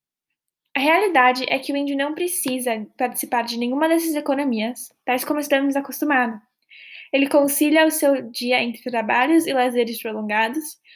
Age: 10-29